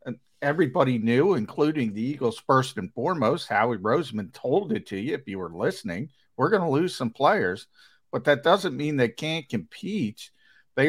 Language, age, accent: English, 50-69, American